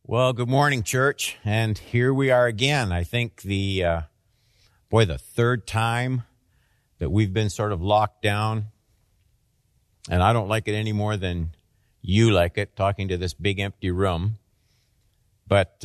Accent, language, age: American, English, 50-69